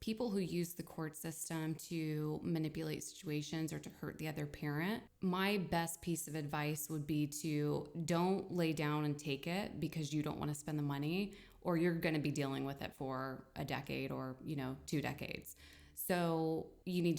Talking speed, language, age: 195 wpm, English, 20-39